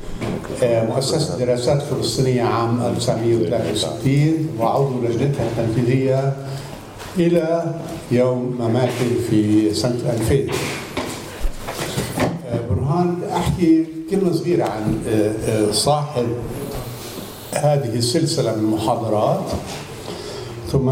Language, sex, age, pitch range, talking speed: English, male, 60-79, 115-150 Hz, 70 wpm